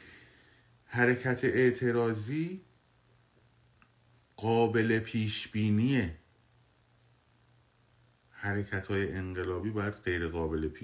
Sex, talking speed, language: male, 55 wpm, Persian